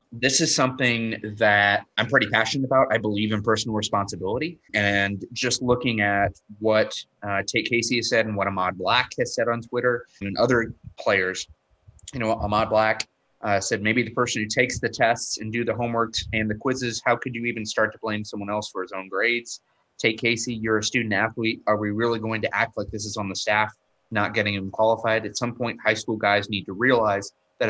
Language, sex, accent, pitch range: English, male, American, 100-120 Hz